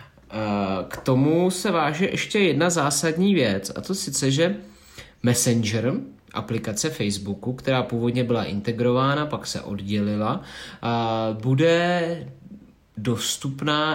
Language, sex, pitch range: Czech, male, 110-160 Hz